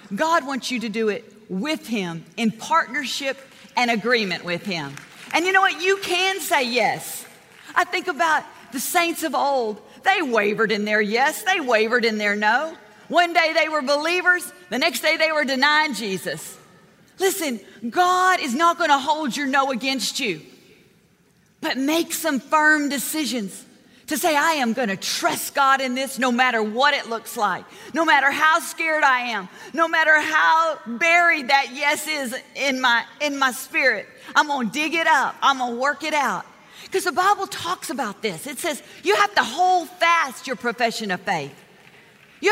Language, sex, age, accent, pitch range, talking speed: English, female, 40-59, American, 235-330 Hz, 180 wpm